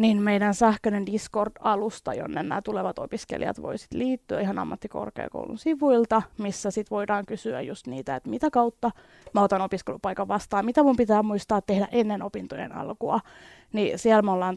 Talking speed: 155 wpm